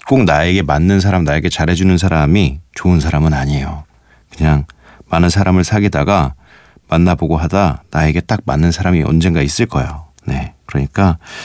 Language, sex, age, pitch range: Korean, male, 40-59, 75-105 Hz